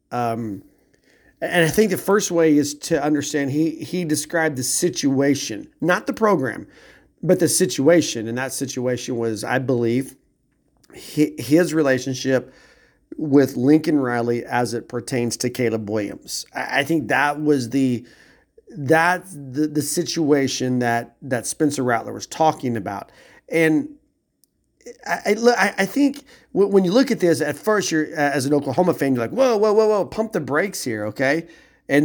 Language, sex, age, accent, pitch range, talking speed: English, male, 40-59, American, 130-180 Hz, 160 wpm